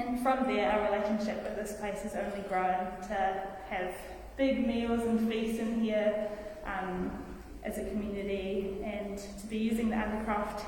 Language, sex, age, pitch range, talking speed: English, female, 10-29, 195-225 Hz, 165 wpm